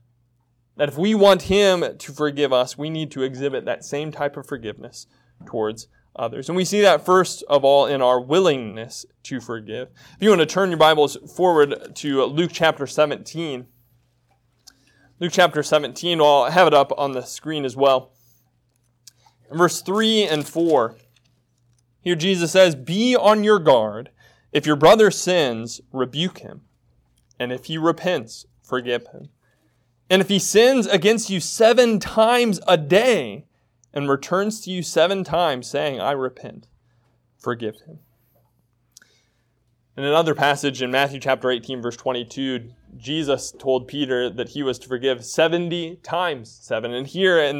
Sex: male